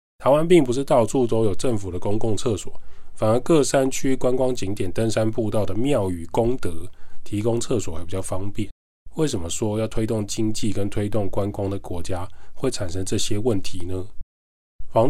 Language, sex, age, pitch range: Chinese, male, 20-39, 95-115 Hz